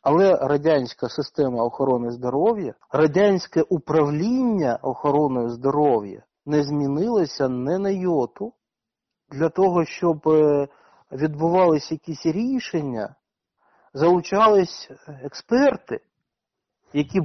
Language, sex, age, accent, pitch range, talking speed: Ukrainian, male, 50-69, native, 150-210 Hz, 80 wpm